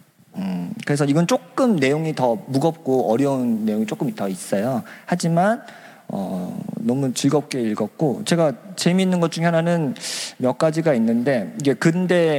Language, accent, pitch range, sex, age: Korean, native, 135-195 Hz, male, 40-59